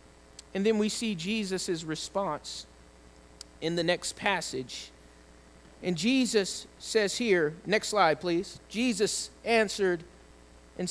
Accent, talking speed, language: American, 110 wpm, English